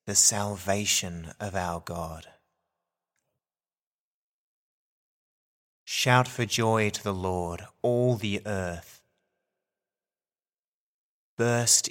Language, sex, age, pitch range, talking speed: English, male, 30-49, 95-115 Hz, 75 wpm